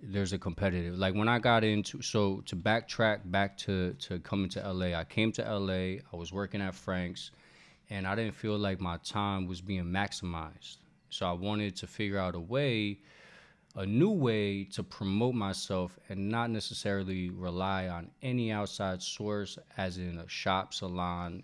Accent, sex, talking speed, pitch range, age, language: American, male, 175 wpm, 95-110 Hz, 20-39, English